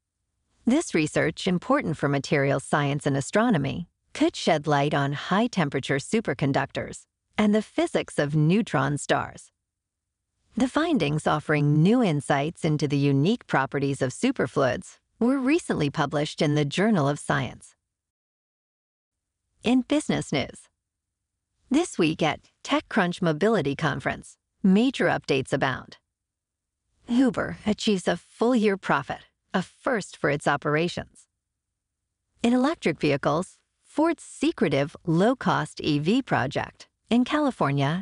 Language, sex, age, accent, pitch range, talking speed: English, female, 40-59, American, 140-220 Hz, 115 wpm